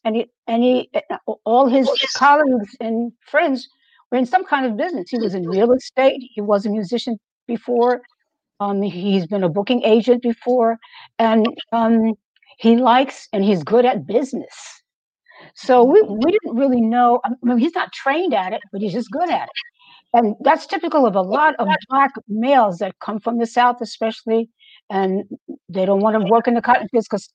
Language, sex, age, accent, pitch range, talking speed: English, female, 60-79, American, 220-275 Hz, 185 wpm